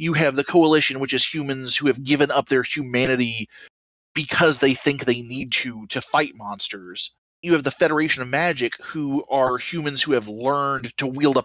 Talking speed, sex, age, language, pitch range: 195 wpm, male, 30-49, English, 125-155 Hz